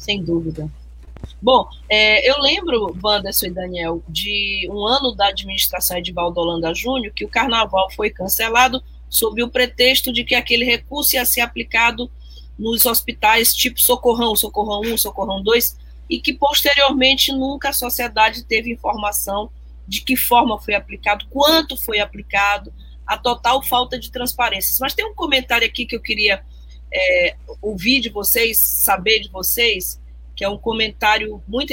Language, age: Portuguese, 20-39